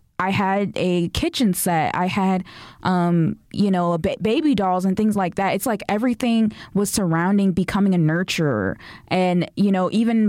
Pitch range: 180-215 Hz